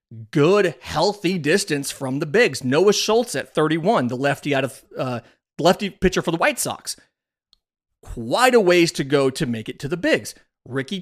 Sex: male